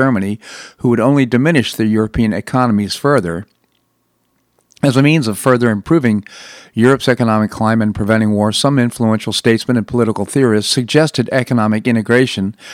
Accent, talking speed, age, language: American, 140 wpm, 50-69, English